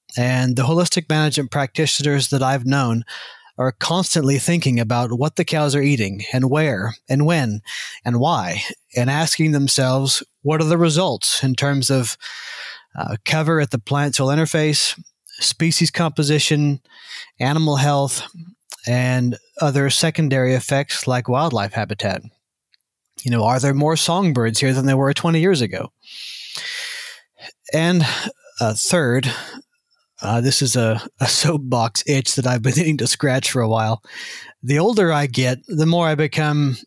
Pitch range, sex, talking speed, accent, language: 125-155 Hz, male, 150 wpm, American, English